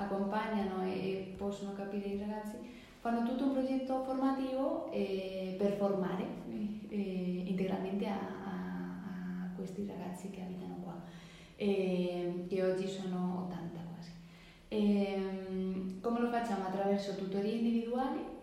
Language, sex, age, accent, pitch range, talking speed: Italian, female, 20-39, Spanish, 185-215 Hz, 120 wpm